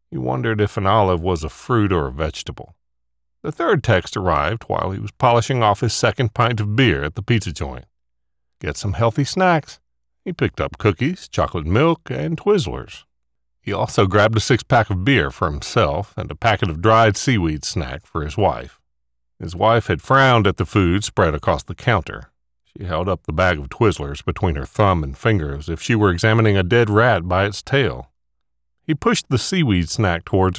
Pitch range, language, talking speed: 75-115 Hz, English, 195 wpm